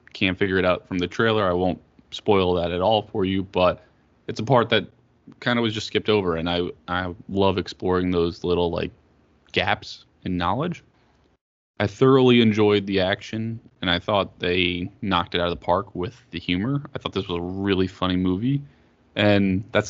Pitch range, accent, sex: 90-110 Hz, American, male